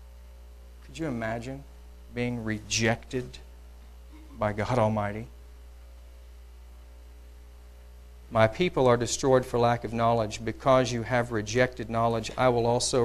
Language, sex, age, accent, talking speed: English, male, 50-69, American, 110 wpm